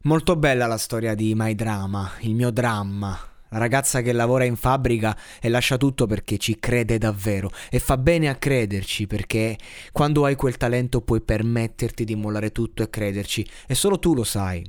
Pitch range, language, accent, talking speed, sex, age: 105-125 Hz, Italian, native, 185 wpm, male, 20-39